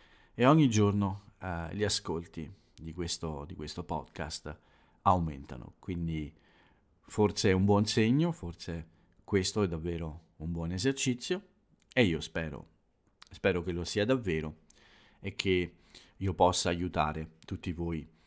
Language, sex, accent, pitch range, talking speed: Italian, male, native, 80-105 Hz, 130 wpm